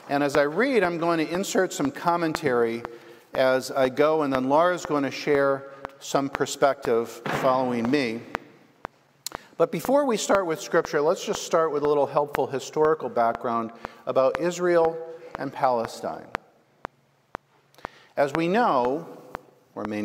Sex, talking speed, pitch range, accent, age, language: male, 140 wpm, 130-160 Hz, American, 50-69, English